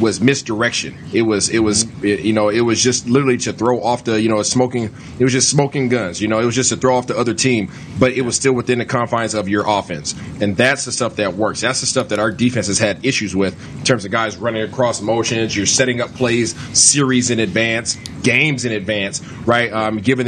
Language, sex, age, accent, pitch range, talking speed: English, male, 30-49, American, 115-130 Hz, 245 wpm